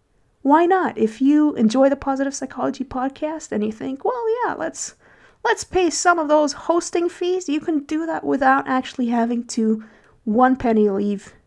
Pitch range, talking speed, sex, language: 210-270 Hz, 175 wpm, female, English